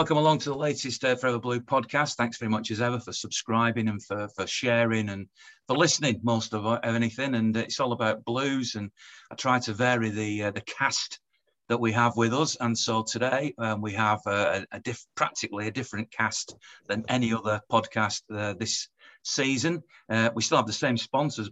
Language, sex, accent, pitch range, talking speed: English, male, British, 105-120 Hz, 200 wpm